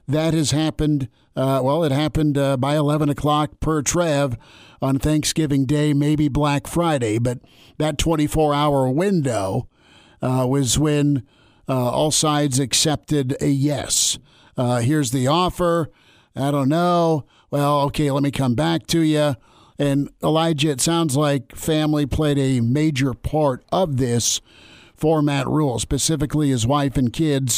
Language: English